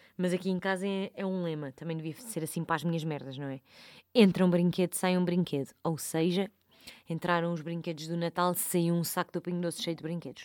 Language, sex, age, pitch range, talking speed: Portuguese, female, 20-39, 155-180 Hz, 230 wpm